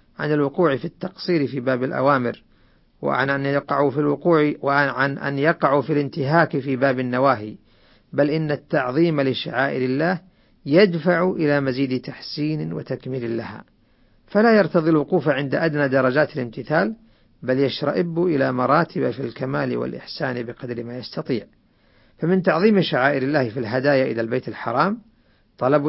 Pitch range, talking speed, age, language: 130-160 Hz, 135 wpm, 50-69, Arabic